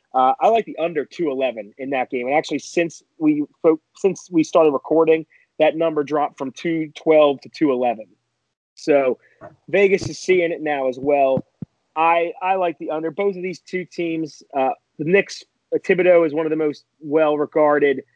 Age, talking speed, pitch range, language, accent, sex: 30-49, 190 wpm, 135-165 Hz, English, American, male